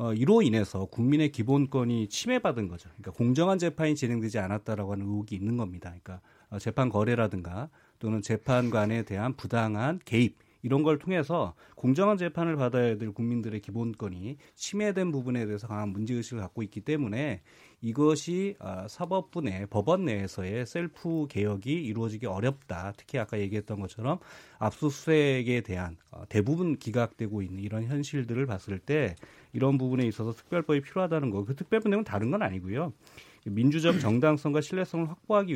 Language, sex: Korean, male